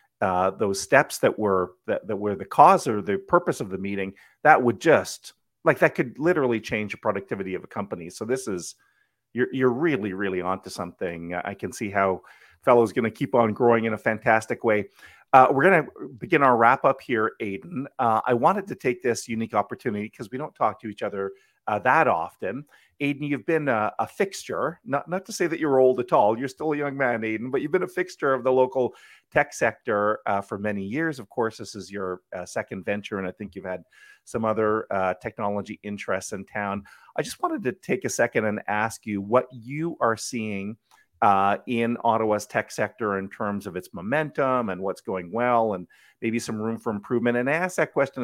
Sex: male